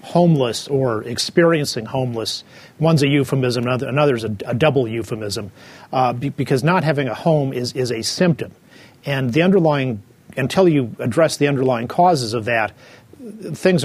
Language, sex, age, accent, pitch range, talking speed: English, male, 40-59, American, 120-150 Hz, 150 wpm